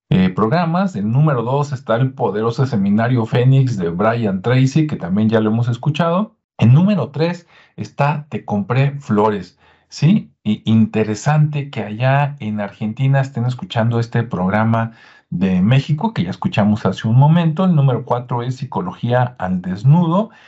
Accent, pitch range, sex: Mexican, 110-155 Hz, male